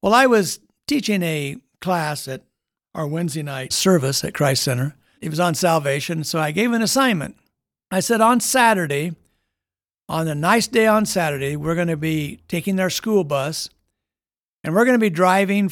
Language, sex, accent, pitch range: English, male, American, 150-205 Hz